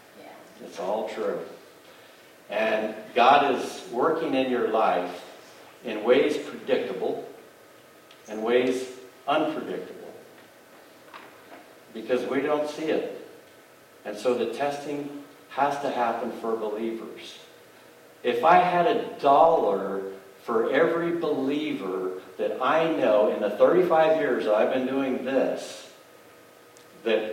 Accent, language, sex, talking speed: American, English, male, 110 wpm